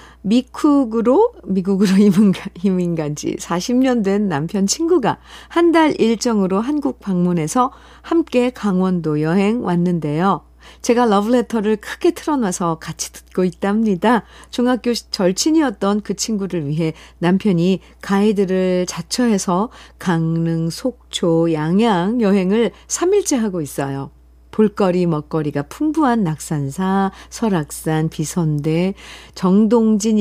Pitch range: 175-245 Hz